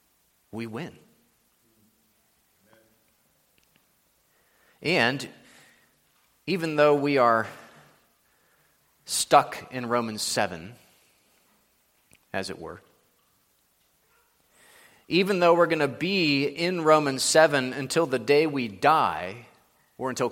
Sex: male